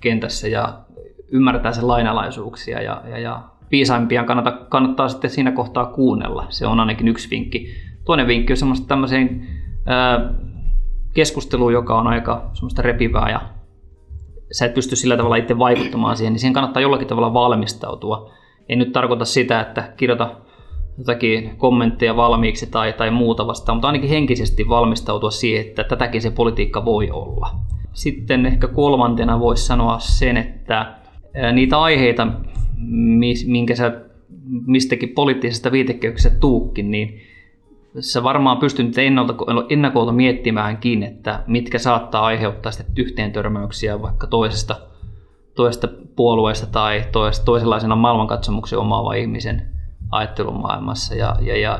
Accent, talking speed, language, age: native, 130 wpm, Finnish, 20-39